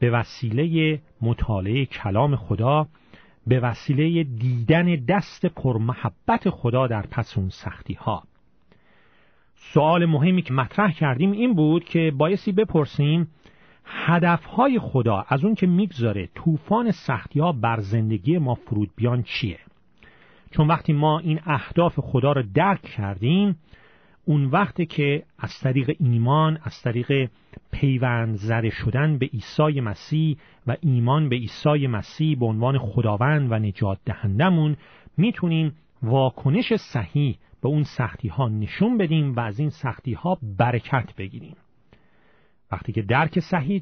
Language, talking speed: Persian, 130 wpm